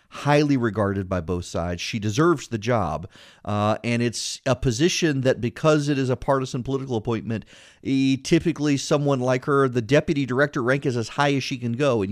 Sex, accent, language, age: male, American, English, 40-59